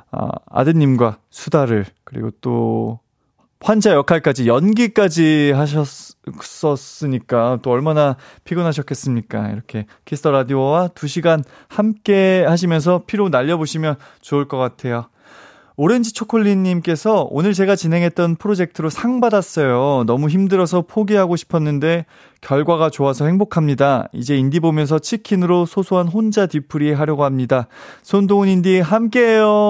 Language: Korean